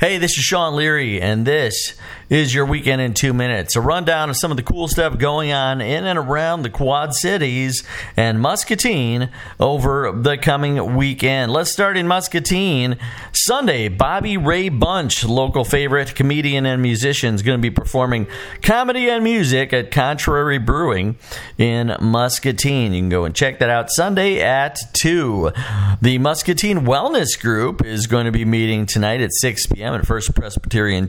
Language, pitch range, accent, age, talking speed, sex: English, 105-145 Hz, American, 40-59, 170 wpm, male